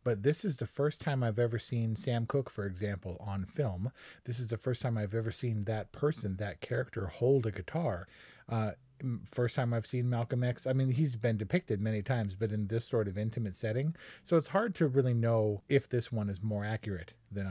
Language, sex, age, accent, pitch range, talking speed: English, male, 40-59, American, 110-130 Hz, 220 wpm